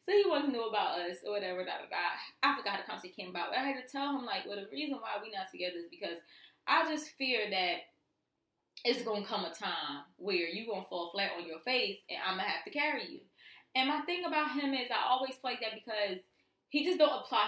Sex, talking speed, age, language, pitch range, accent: female, 260 wpm, 20-39, English, 205-300 Hz, American